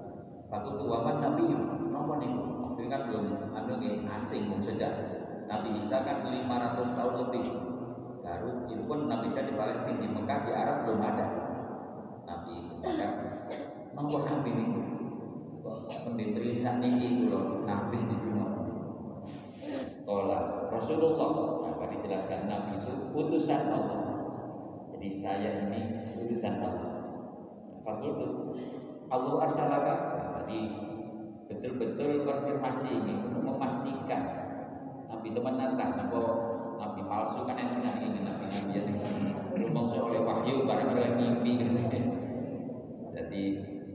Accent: native